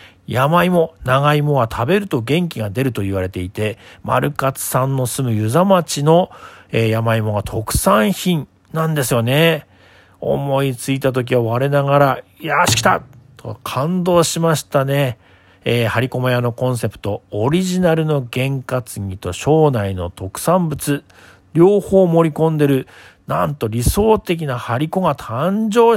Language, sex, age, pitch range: Japanese, male, 40-59, 110-150 Hz